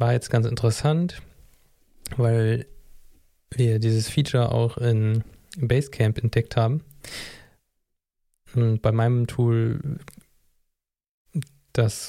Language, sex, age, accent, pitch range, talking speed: German, male, 20-39, German, 110-125 Hz, 90 wpm